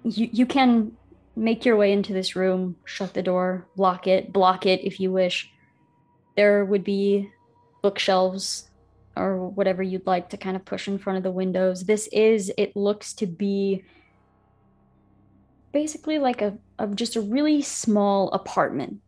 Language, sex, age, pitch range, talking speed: English, female, 20-39, 180-205 Hz, 160 wpm